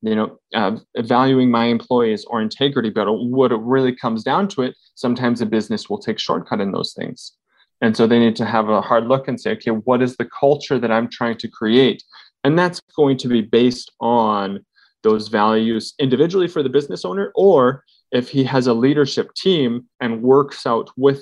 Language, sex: English, male